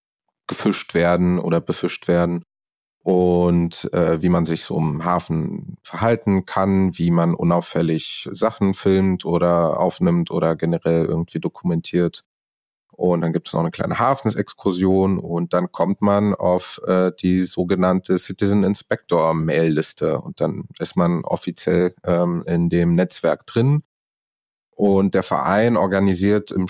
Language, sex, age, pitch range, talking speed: German, male, 30-49, 85-100 Hz, 135 wpm